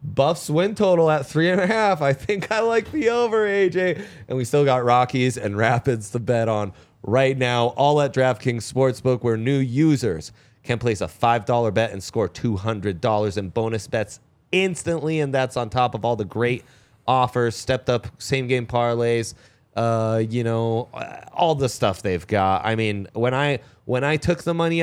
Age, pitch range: 30-49, 115-145 Hz